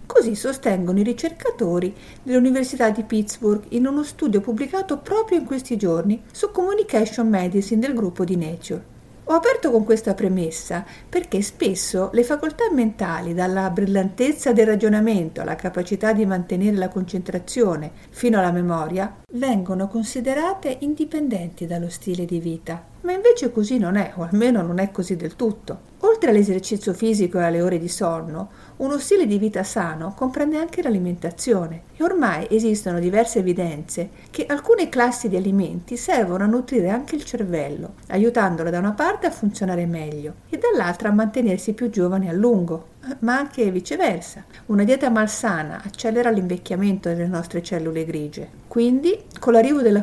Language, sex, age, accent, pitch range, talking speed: Italian, female, 50-69, native, 180-245 Hz, 150 wpm